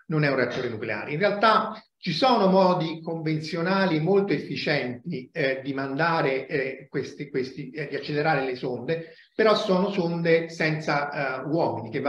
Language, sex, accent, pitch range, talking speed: Italian, male, native, 135-185 Hz, 155 wpm